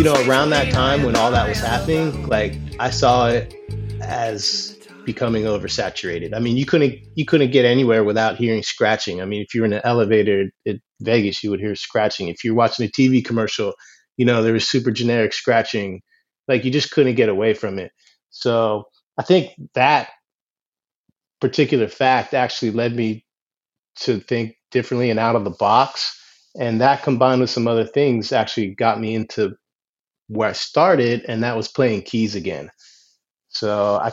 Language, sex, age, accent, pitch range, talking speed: English, male, 30-49, American, 110-125 Hz, 180 wpm